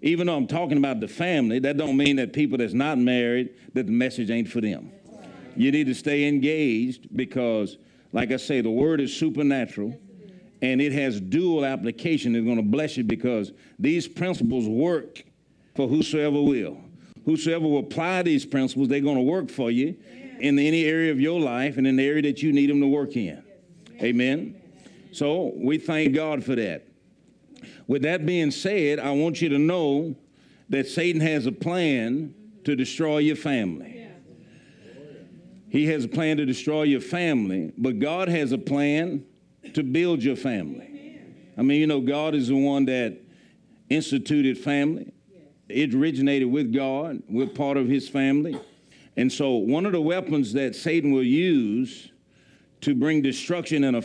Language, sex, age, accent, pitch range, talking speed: English, male, 50-69, American, 130-160 Hz, 175 wpm